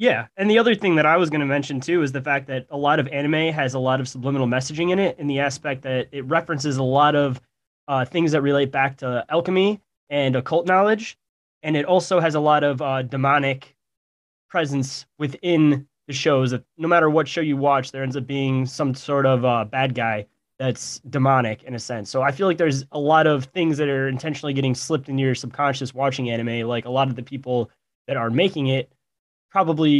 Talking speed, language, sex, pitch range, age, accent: 225 wpm, English, male, 130-150 Hz, 20-39, American